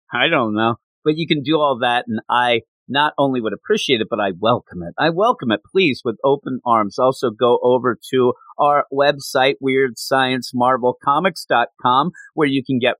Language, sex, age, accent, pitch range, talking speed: English, male, 40-59, American, 110-140 Hz, 175 wpm